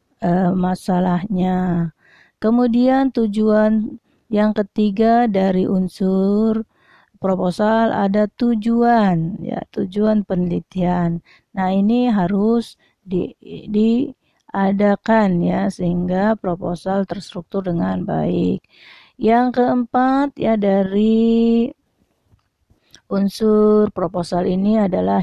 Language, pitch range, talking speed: Indonesian, 190-230 Hz, 75 wpm